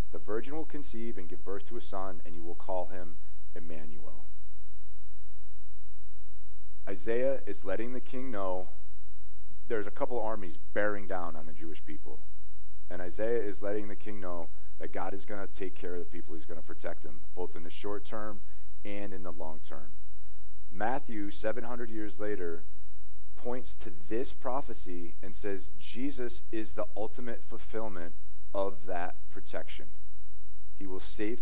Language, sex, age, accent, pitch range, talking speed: English, male, 40-59, American, 90-105 Hz, 165 wpm